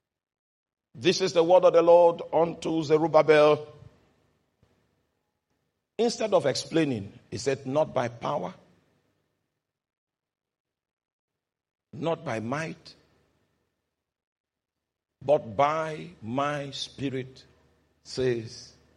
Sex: male